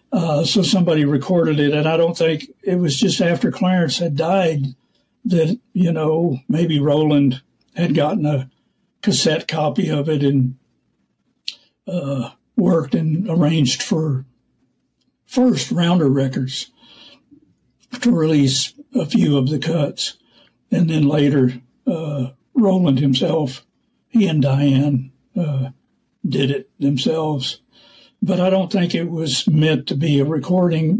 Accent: American